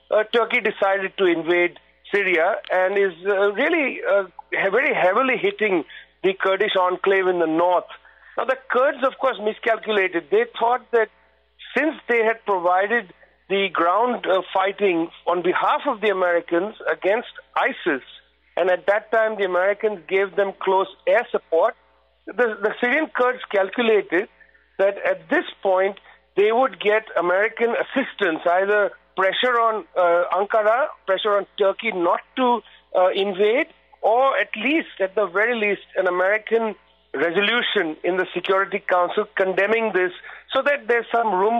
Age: 50-69